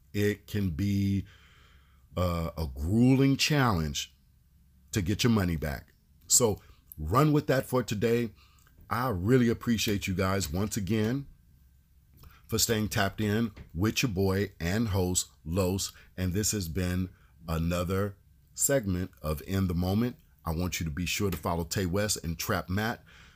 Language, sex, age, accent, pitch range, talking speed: English, male, 50-69, American, 85-110 Hz, 150 wpm